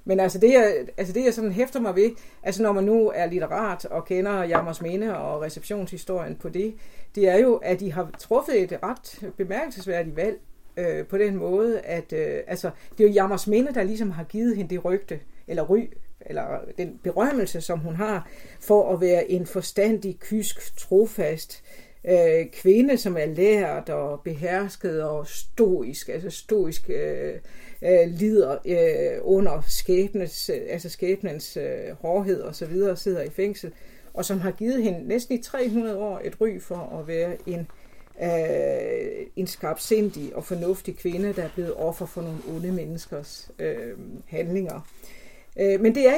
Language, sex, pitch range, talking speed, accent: Danish, female, 180-225 Hz, 170 wpm, native